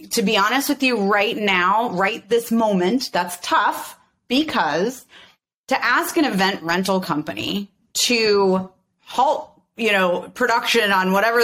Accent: American